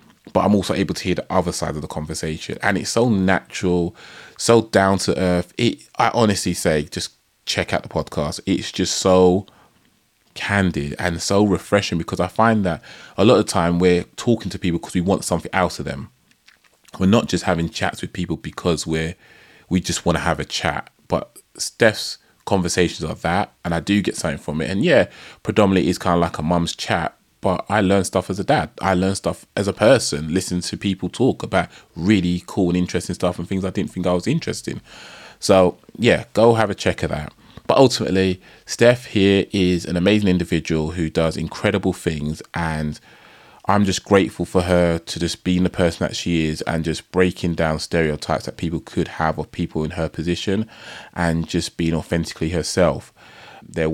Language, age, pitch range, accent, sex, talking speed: English, 20-39, 85-95 Hz, British, male, 200 wpm